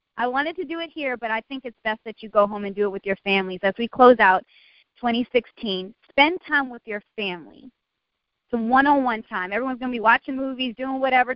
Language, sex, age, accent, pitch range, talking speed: English, female, 30-49, American, 200-250 Hz, 220 wpm